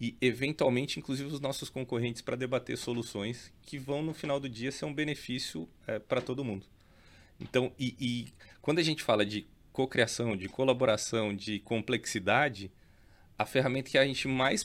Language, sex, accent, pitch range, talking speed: Portuguese, male, Brazilian, 100-125 Hz, 170 wpm